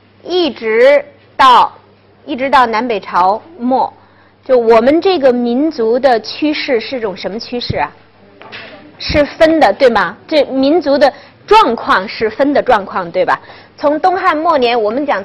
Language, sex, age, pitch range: Chinese, female, 30-49, 225-310 Hz